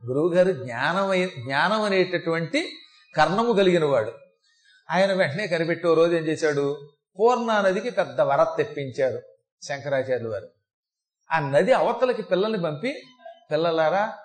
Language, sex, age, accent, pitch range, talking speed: Telugu, male, 30-49, native, 160-225 Hz, 110 wpm